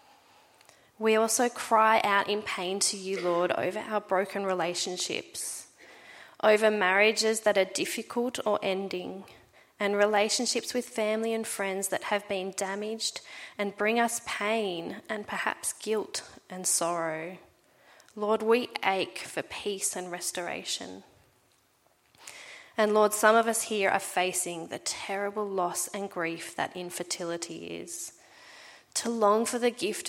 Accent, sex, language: Australian, female, English